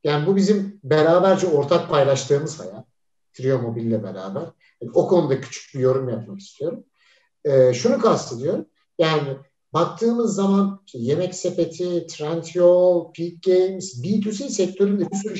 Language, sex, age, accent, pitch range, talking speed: Turkish, male, 60-79, native, 135-210 Hz, 130 wpm